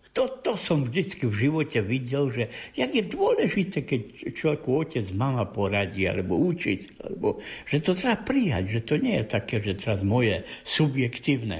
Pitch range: 105-145 Hz